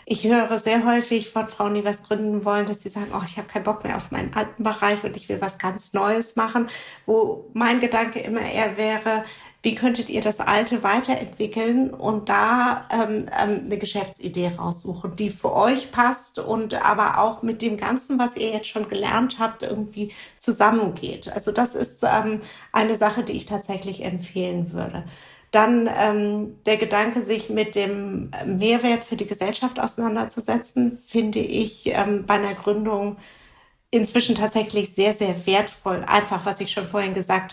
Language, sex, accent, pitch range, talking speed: German, female, German, 205-230 Hz, 170 wpm